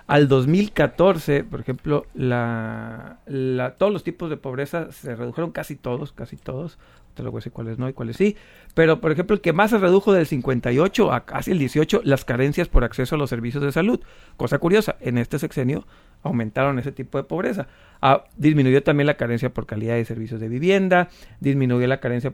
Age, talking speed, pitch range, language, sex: 40-59, 200 wpm, 130-175 Hz, Spanish, male